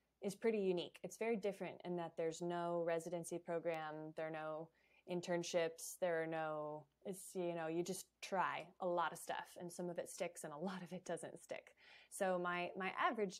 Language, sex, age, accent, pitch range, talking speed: English, female, 20-39, American, 165-185 Hz, 200 wpm